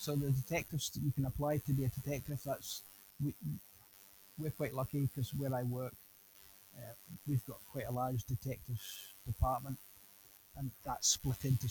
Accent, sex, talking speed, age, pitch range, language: British, male, 165 wpm, 30-49, 100-140 Hz, English